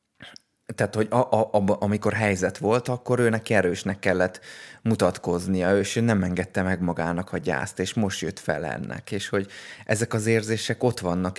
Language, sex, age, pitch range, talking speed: Hungarian, male, 20-39, 95-110 Hz, 165 wpm